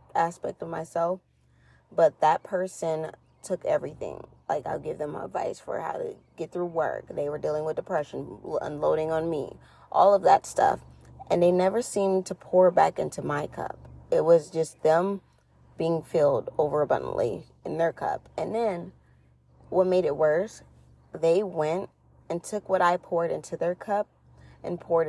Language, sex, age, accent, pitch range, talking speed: English, female, 20-39, American, 165-195 Hz, 165 wpm